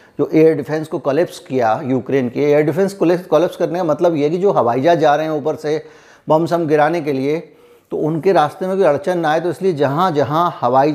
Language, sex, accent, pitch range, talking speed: Hindi, male, native, 140-185 Hz, 230 wpm